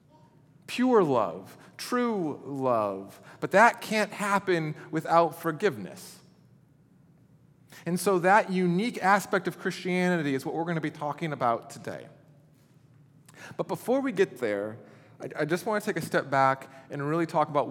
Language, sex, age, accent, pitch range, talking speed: English, male, 30-49, American, 145-185 Hz, 145 wpm